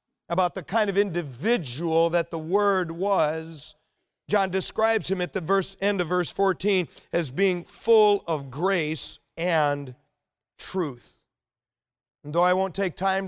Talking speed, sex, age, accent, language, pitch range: 140 wpm, male, 40-59, American, English, 165-210 Hz